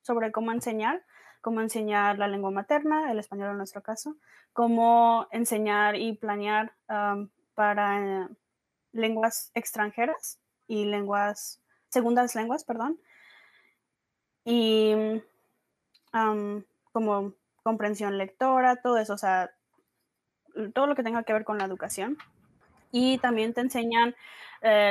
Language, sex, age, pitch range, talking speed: Spanish, female, 20-39, 205-245 Hz, 120 wpm